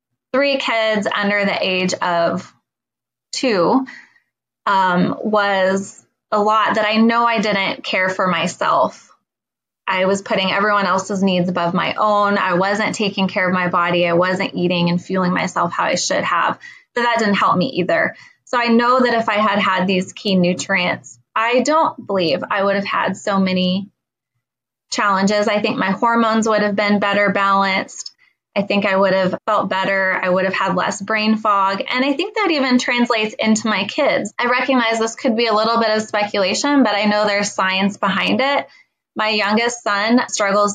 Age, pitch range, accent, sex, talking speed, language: 20-39, 190-235 Hz, American, female, 185 wpm, English